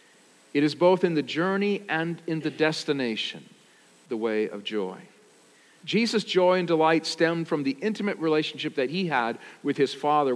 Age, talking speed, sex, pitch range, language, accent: 50-69, 170 wpm, male, 130-175 Hz, English, American